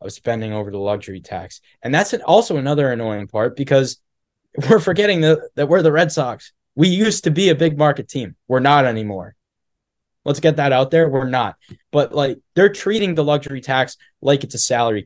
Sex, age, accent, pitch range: male, 10-29, American, 120-165 Hz